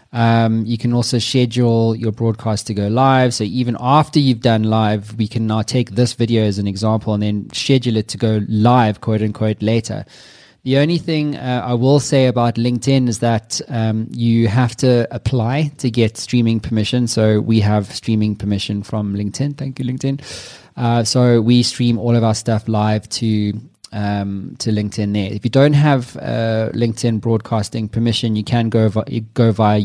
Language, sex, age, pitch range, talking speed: English, male, 20-39, 105-120 Hz, 185 wpm